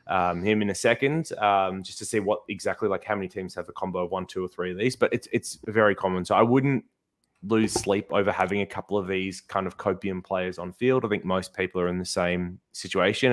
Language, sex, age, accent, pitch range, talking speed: English, male, 20-39, Australian, 95-105 Hz, 250 wpm